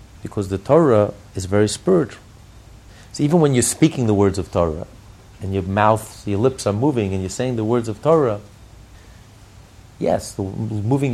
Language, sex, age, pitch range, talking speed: English, male, 50-69, 100-130 Hz, 165 wpm